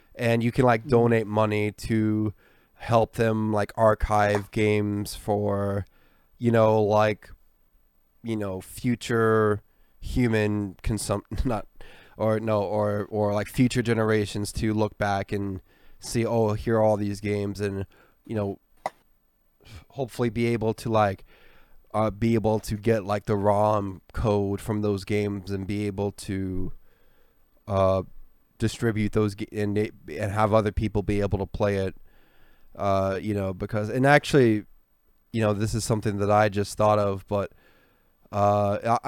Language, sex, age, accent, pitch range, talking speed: English, male, 20-39, American, 100-115 Hz, 145 wpm